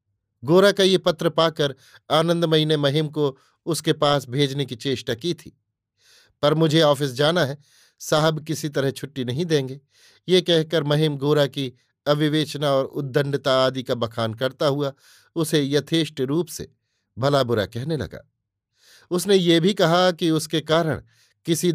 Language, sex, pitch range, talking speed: Hindi, male, 125-160 Hz, 155 wpm